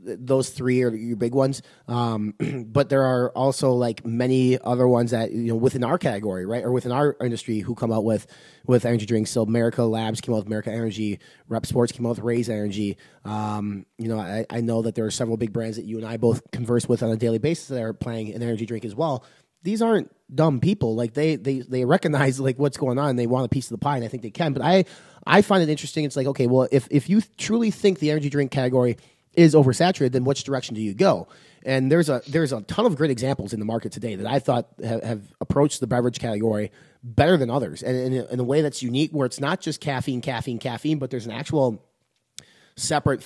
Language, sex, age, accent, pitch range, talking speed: English, male, 30-49, American, 115-140 Hz, 245 wpm